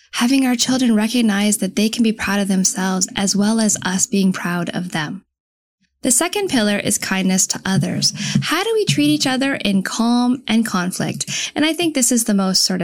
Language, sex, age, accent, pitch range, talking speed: English, female, 10-29, American, 195-260 Hz, 205 wpm